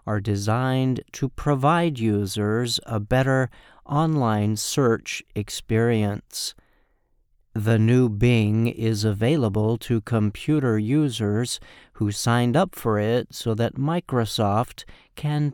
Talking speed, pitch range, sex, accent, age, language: 105 wpm, 110-135 Hz, male, American, 50-69, English